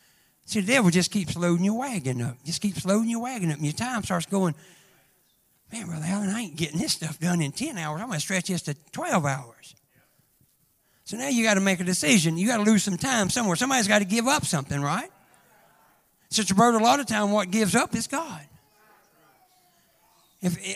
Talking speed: 215 wpm